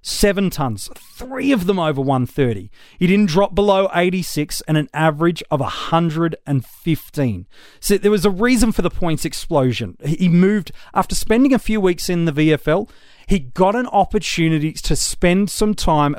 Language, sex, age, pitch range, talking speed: English, male, 30-49, 145-200 Hz, 165 wpm